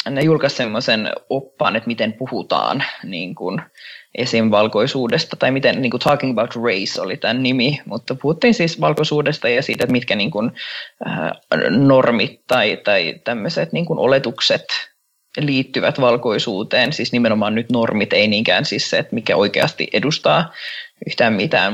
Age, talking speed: 20-39, 145 wpm